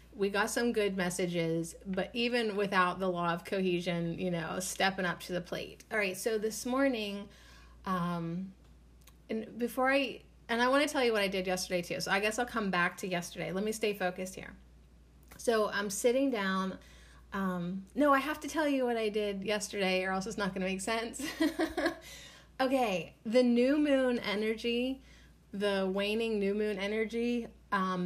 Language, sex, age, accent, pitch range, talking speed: English, female, 30-49, American, 185-240 Hz, 185 wpm